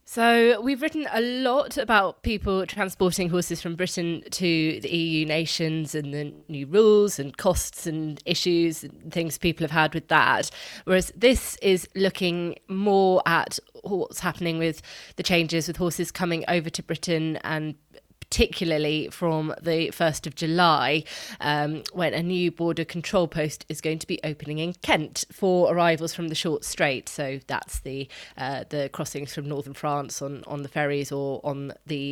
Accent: British